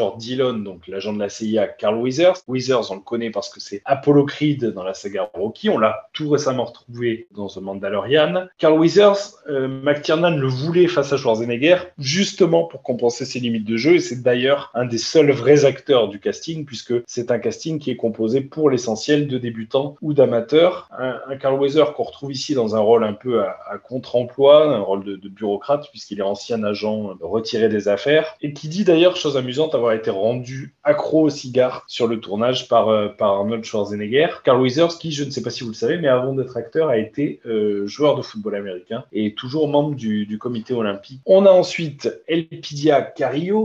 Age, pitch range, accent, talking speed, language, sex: 20-39, 110-150 Hz, French, 210 wpm, French, male